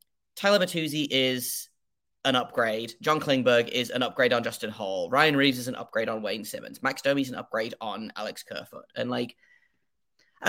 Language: English